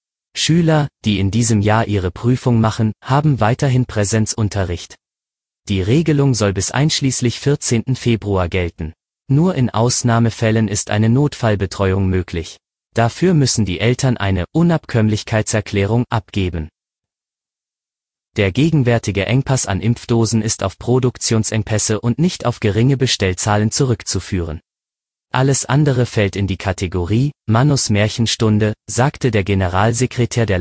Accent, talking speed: German, 115 wpm